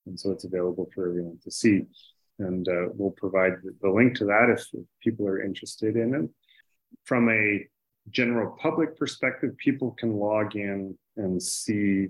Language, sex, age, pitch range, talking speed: English, male, 30-49, 90-110 Hz, 175 wpm